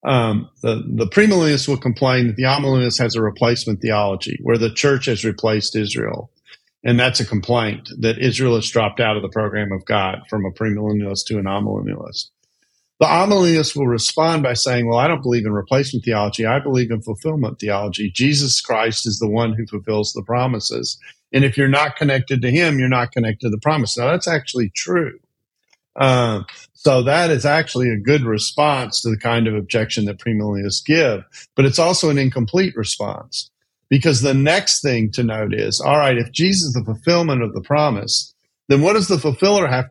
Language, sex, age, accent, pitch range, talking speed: English, male, 50-69, American, 110-140 Hz, 190 wpm